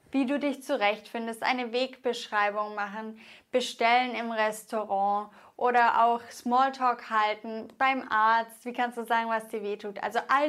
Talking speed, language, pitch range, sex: 150 wpm, English, 220-270 Hz, female